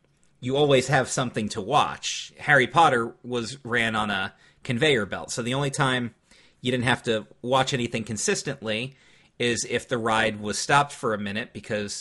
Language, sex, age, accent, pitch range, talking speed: English, male, 30-49, American, 115-150 Hz, 175 wpm